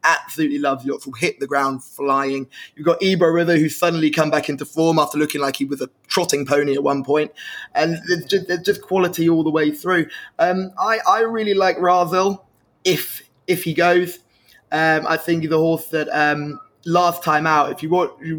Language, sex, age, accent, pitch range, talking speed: English, male, 20-39, British, 145-175 Hz, 200 wpm